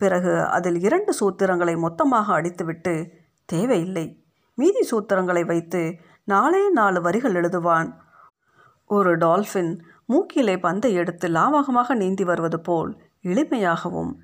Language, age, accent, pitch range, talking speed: Tamil, 50-69, native, 175-215 Hz, 100 wpm